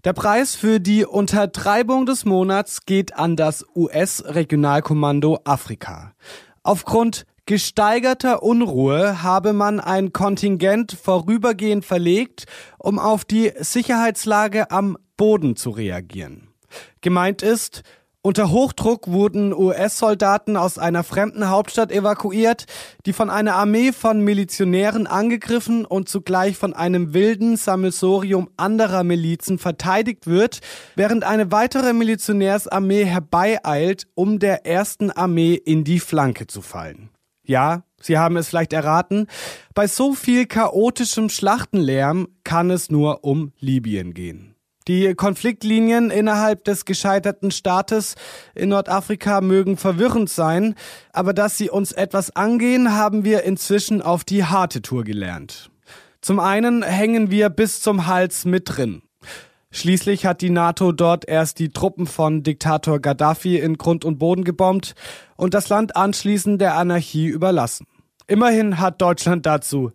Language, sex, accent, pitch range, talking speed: German, male, German, 170-210 Hz, 130 wpm